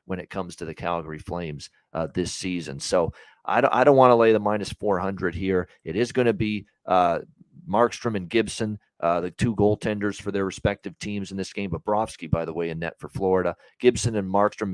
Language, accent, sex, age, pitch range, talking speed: English, American, male, 40-59, 95-110 Hz, 220 wpm